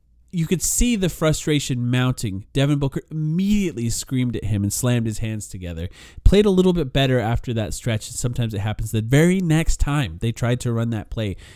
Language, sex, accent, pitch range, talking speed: English, male, American, 115-165 Hz, 195 wpm